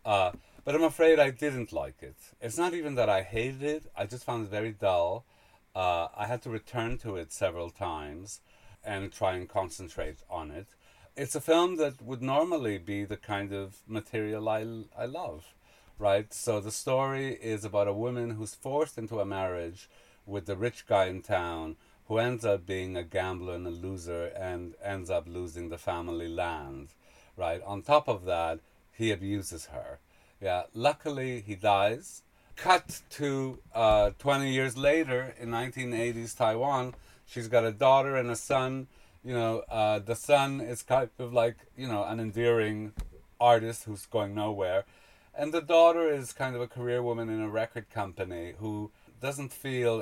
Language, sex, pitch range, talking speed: English, male, 95-125 Hz, 175 wpm